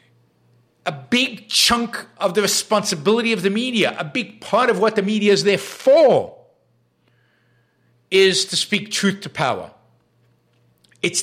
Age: 50-69